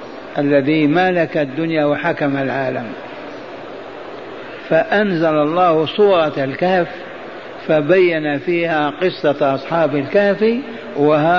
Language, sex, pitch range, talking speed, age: Arabic, male, 150-185 Hz, 80 wpm, 60-79